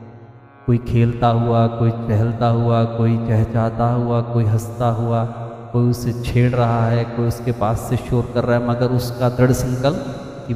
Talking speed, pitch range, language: 170 wpm, 115-135 Hz, Hindi